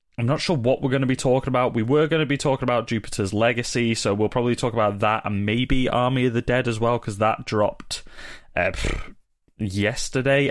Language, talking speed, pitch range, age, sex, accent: English, 215 wpm, 110-145 Hz, 20-39, male, British